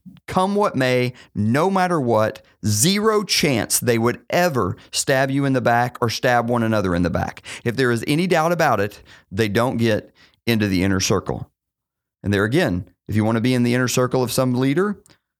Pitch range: 105-150 Hz